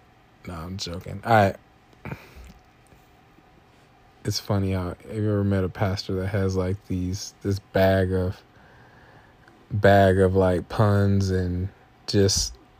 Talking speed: 125 wpm